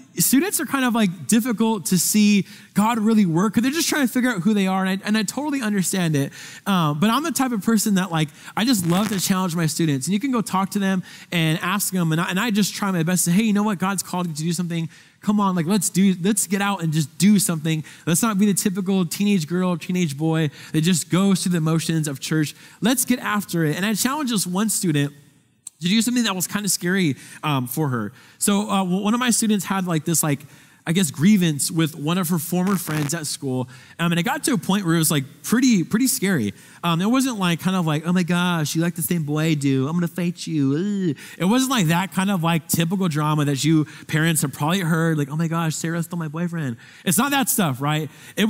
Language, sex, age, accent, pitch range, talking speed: English, male, 20-39, American, 160-210 Hz, 260 wpm